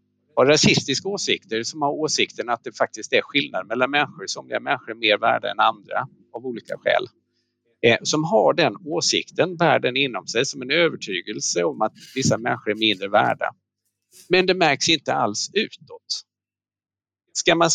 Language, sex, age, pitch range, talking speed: Swedish, male, 50-69, 115-165 Hz, 160 wpm